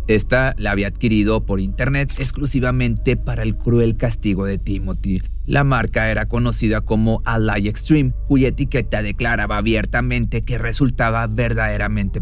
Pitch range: 105-130 Hz